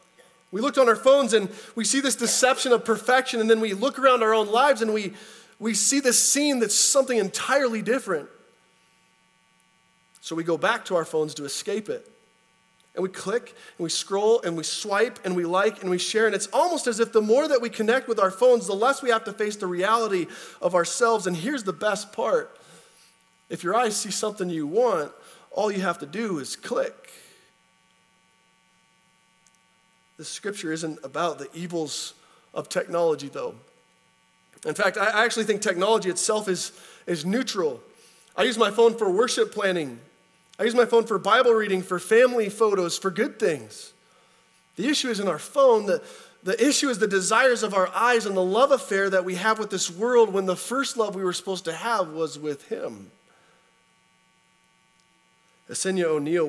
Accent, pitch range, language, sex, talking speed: American, 155-230 Hz, English, male, 185 wpm